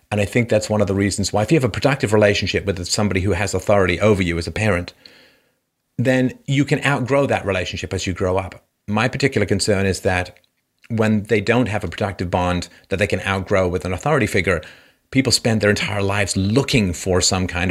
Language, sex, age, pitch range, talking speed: English, male, 40-59, 105-160 Hz, 215 wpm